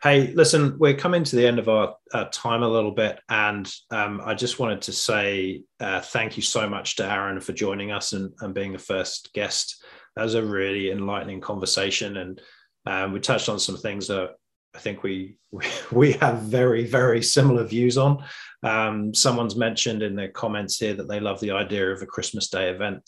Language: English